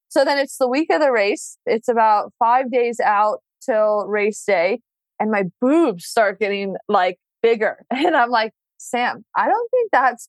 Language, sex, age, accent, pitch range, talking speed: English, female, 20-39, American, 220-295 Hz, 180 wpm